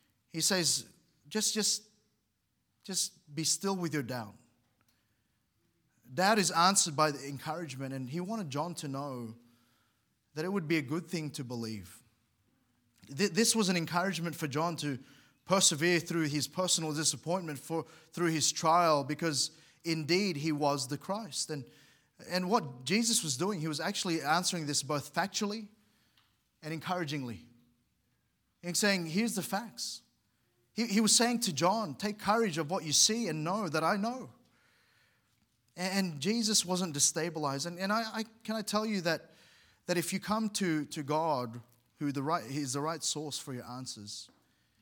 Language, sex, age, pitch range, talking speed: English, male, 20-39, 135-185 Hz, 160 wpm